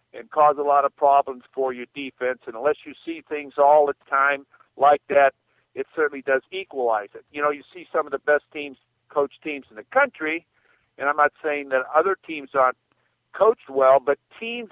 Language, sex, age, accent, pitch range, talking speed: English, male, 50-69, American, 140-165 Hz, 205 wpm